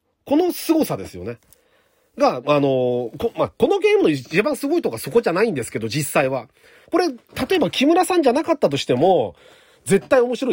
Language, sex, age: Japanese, male, 40-59